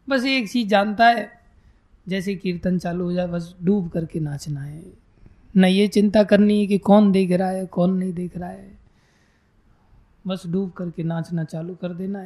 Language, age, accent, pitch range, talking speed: Hindi, 20-39, native, 170-210 Hz, 180 wpm